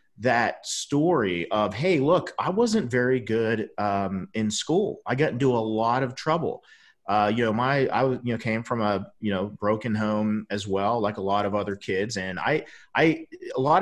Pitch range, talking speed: 105-135 Hz, 205 wpm